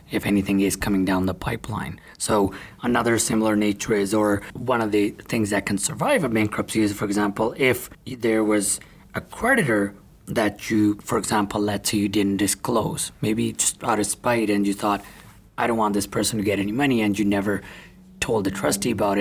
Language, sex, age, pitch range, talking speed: English, male, 30-49, 100-115 Hz, 195 wpm